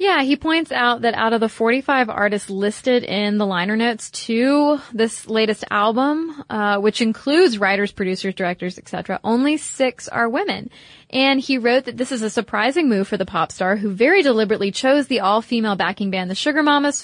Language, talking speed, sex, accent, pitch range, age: English, 190 wpm, female, American, 195-255 Hz, 20-39